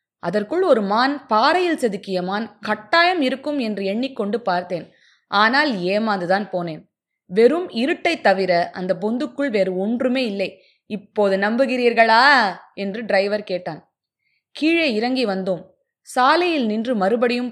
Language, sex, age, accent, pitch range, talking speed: Tamil, female, 20-39, native, 195-275 Hz, 115 wpm